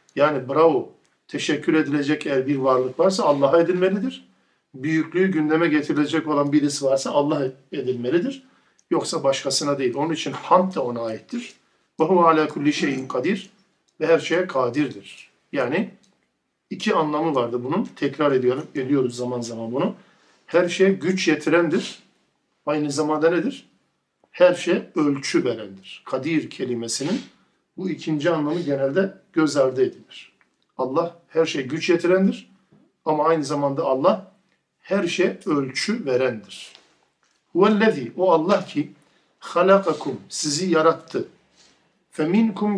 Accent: native